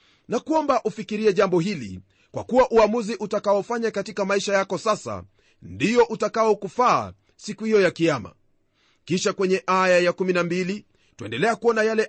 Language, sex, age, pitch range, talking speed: Swahili, male, 40-59, 165-215 Hz, 135 wpm